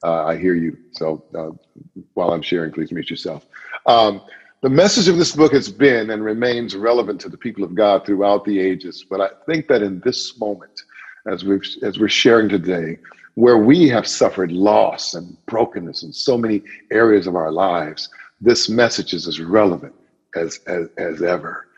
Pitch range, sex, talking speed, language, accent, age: 90-110 Hz, male, 185 wpm, English, American, 50-69